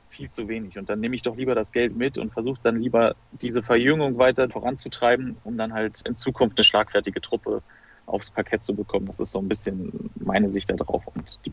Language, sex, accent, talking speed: German, male, German, 220 wpm